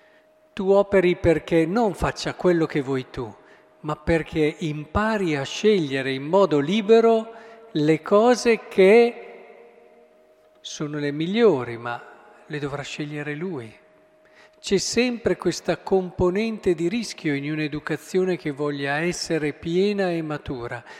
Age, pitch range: 50-69, 145-190 Hz